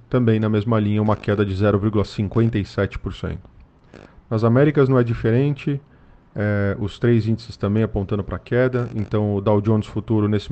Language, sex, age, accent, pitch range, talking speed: Portuguese, male, 40-59, Brazilian, 100-115 Hz, 155 wpm